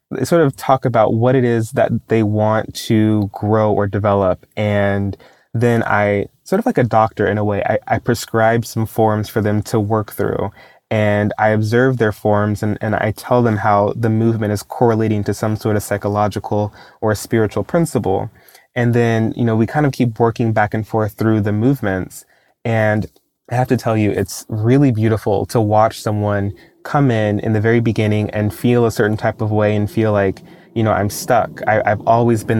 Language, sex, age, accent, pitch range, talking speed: English, male, 20-39, American, 105-115 Hz, 200 wpm